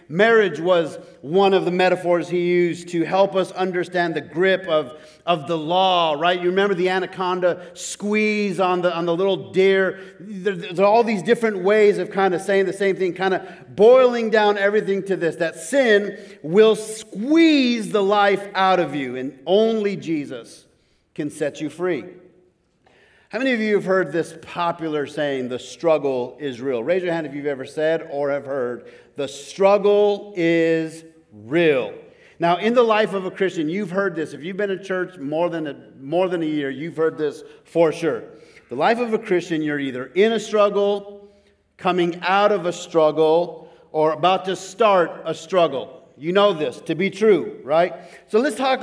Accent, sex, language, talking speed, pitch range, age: American, male, English, 185 wpm, 165-205 Hz, 40-59